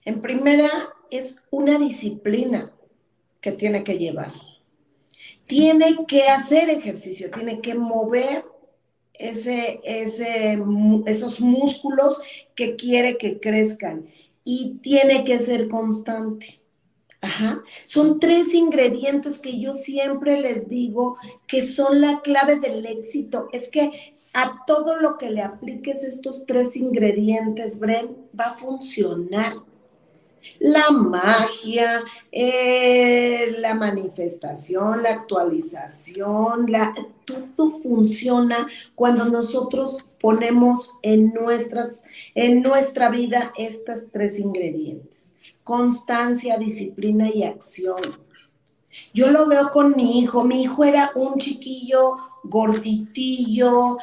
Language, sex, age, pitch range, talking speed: Spanish, female, 40-59, 215-265 Hz, 100 wpm